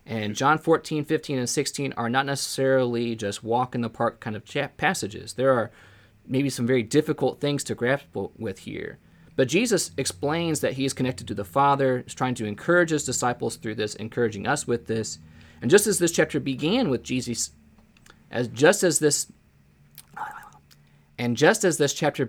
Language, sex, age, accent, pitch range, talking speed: English, male, 20-39, American, 105-140 Hz, 185 wpm